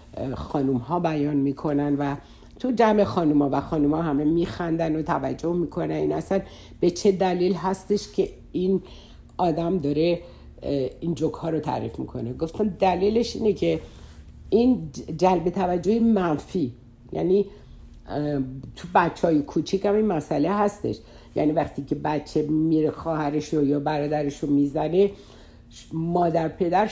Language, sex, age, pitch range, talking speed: Persian, female, 60-79, 145-195 Hz, 135 wpm